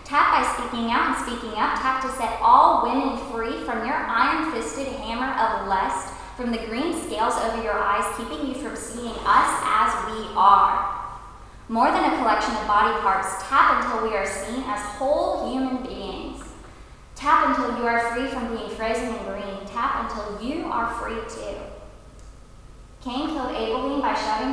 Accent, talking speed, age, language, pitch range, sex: American, 175 wpm, 10-29, English, 200-245 Hz, female